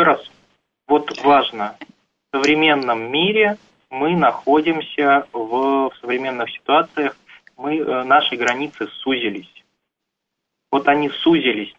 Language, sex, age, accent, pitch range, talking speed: Russian, male, 20-39, native, 130-160 Hz, 100 wpm